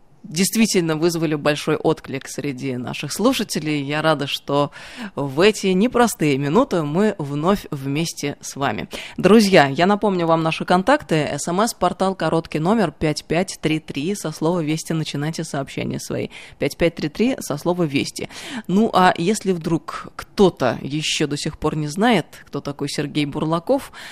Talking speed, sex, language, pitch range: 135 wpm, female, Russian, 150-195 Hz